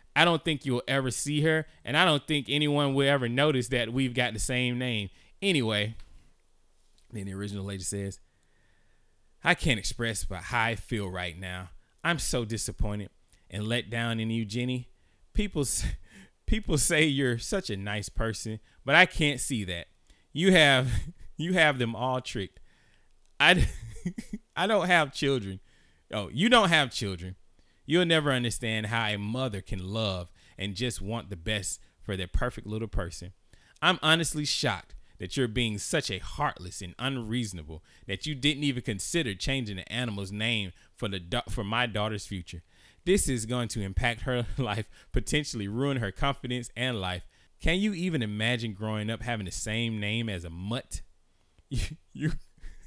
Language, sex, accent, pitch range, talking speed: English, male, American, 95-135 Hz, 165 wpm